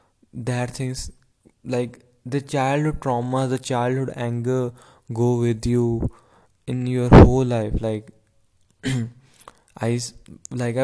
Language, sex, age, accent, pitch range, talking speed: English, male, 20-39, Indian, 115-130 Hz, 105 wpm